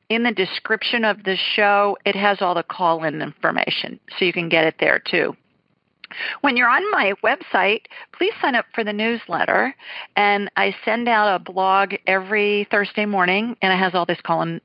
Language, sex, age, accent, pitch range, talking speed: English, female, 50-69, American, 170-215 Hz, 185 wpm